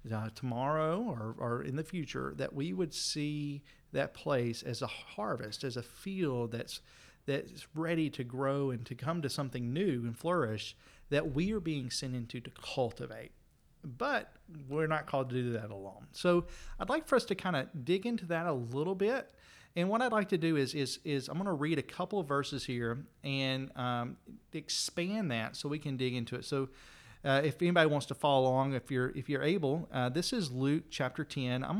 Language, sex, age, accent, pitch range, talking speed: English, male, 40-59, American, 125-165 Hz, 210 wpm